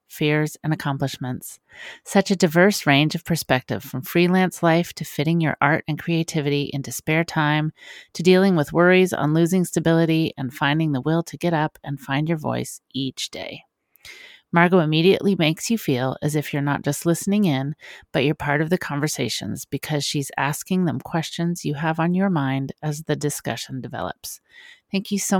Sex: female